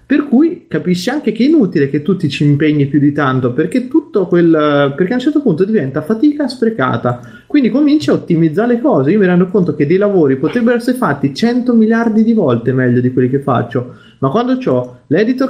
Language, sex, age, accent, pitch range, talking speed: Italian, male, 30-49, native, 140-225 Hz, 210 wpm